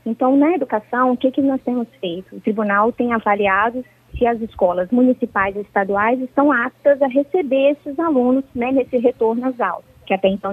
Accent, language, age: Brazilian, Portuguese, 20-39